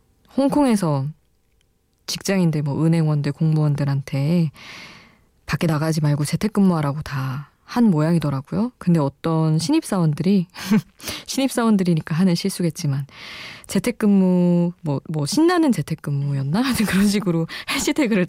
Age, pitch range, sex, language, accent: 20-39, 150-200 Hz, female, Korean, native